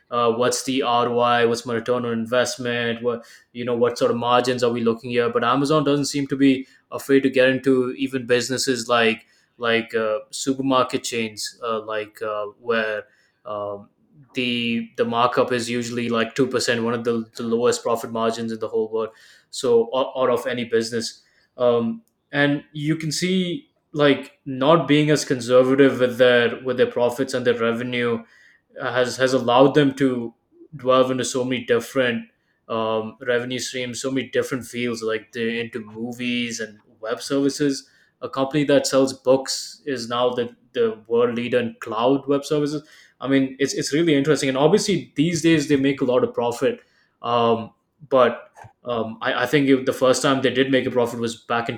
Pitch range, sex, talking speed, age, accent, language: 115-135 Hz, male, 180 wpm, 20-39, Indian, English